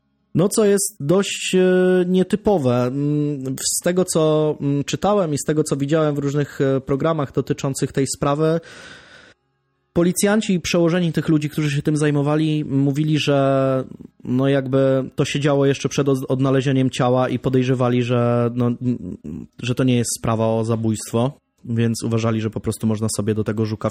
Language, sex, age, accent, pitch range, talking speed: Polish, male, 20-39, native, 115-155 Hz, 150 wpm